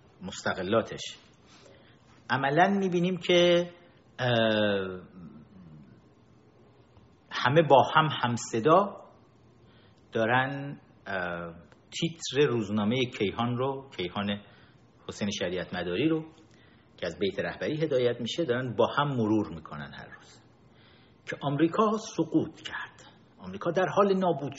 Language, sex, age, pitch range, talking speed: Persian, male, 50-69, 115-170 Hz, 100 wpm